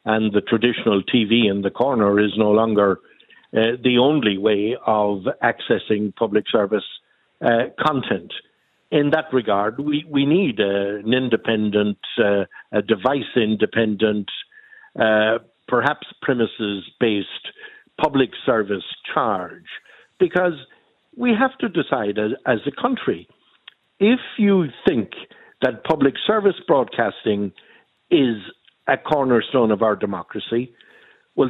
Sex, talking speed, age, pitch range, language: male, 120 wpm, 60-79, 110-160 Hz, English